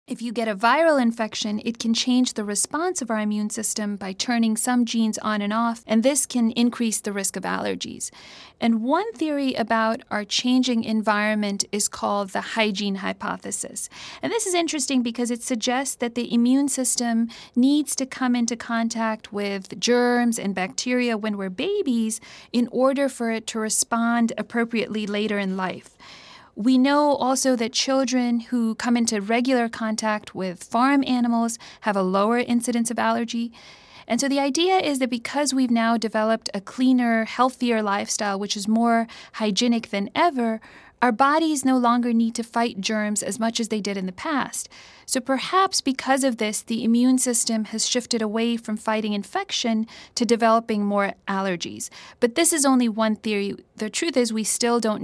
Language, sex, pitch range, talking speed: English, female, 215-250 Hz, 175 wpm